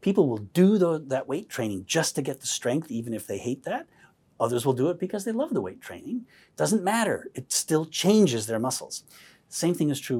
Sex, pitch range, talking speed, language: male, 115-180 Hz, 220 wpm, English